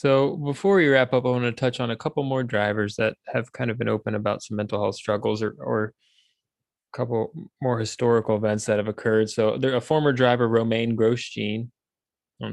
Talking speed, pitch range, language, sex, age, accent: 205 wpm, 105-125 Hz, English, male, 20-39, American